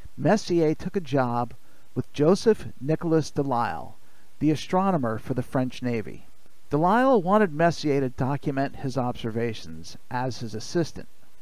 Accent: American